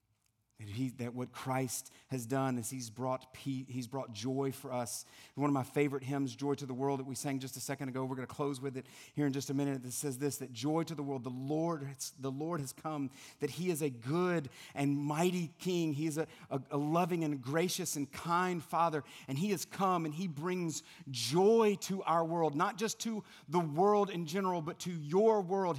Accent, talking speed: American, 230 wpm